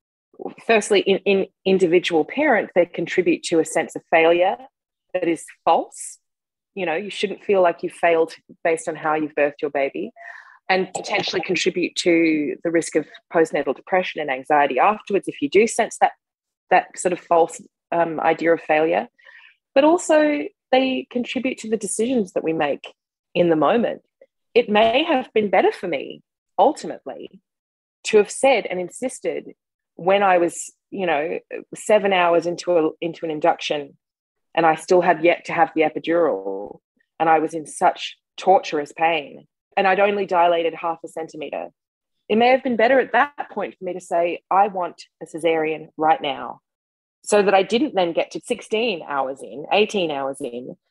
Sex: female